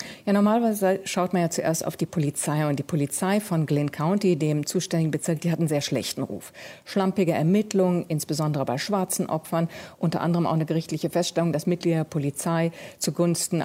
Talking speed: 180 wpm